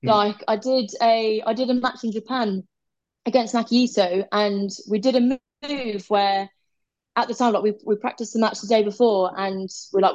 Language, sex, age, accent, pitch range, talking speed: English, female, 20-39, British, 190-240 Hz, 195 wpm